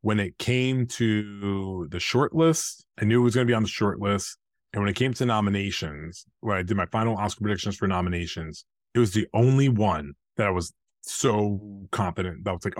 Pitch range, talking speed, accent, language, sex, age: 95-115 Hz, 210 wpm, American, English, male, 30-49